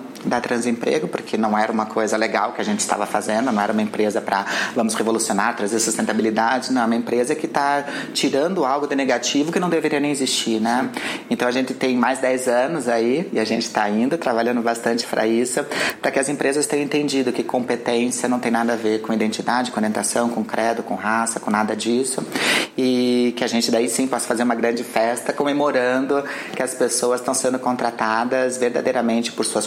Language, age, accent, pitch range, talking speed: Portuguese, 30-49, Brazilian, 110-125 Hz, 200 wpm